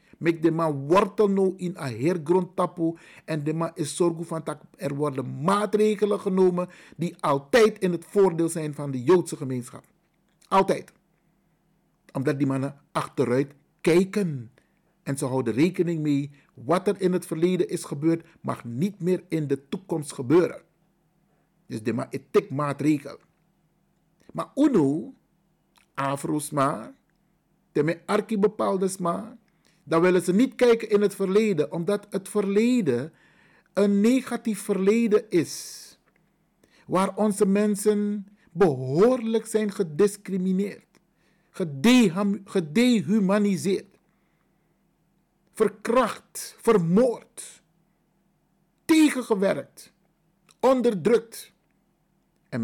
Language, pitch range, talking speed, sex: Dutch, 165-205 Hz, 110 wpm, male